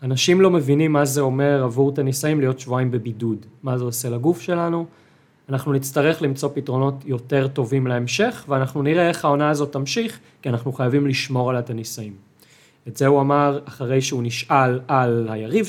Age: 30-49